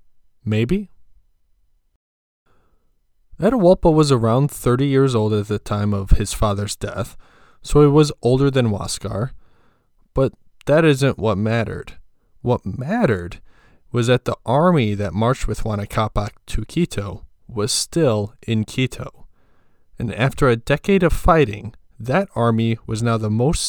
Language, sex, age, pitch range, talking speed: English, male, 20-39, 100-135 Hz, 135 wpm